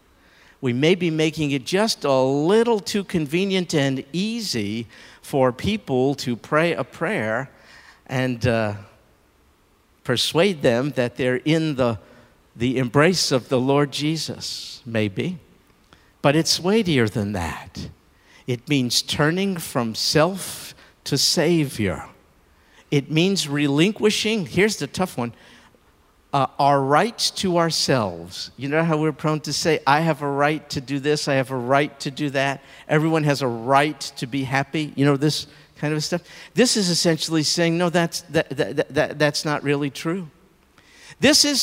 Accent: American